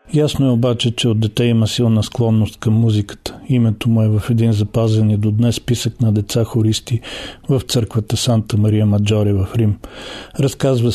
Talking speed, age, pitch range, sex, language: 175 wpm, 40-59, 110-125 Hz, male, Bulgarian